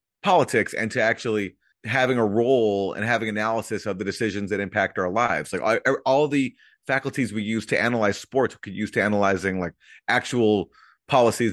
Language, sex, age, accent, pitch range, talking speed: English, male, 30-49, American, 95-115 Hz, 175 wpm